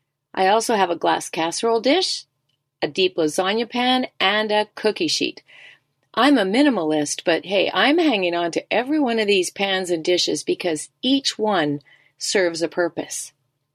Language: English